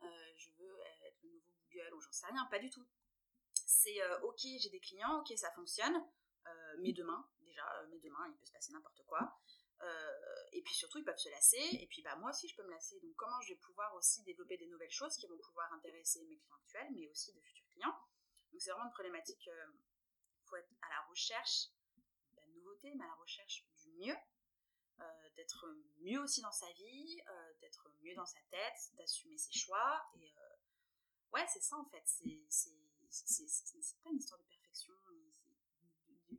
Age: 30-49